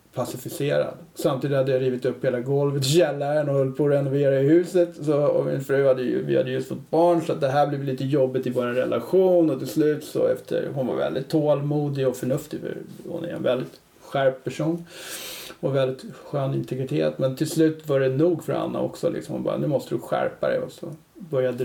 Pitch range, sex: 130-160 Hz, male